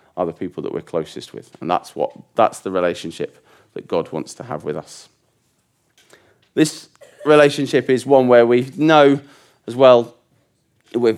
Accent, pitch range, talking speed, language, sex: British, 105-140 Hz, 155 wpm, English, male